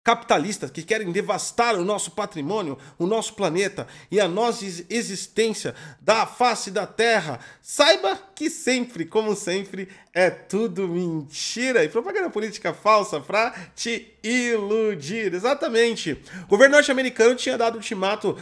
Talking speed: 130 wpm